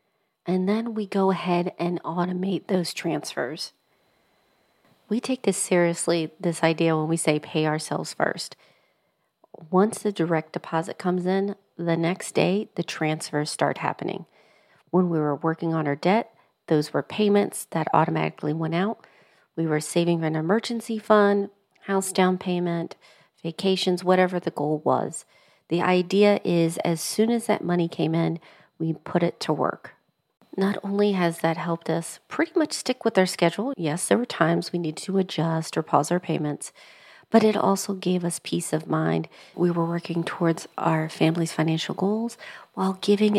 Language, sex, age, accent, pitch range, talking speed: English, female, 40-59, American, 160-195 Hz, 165 wpm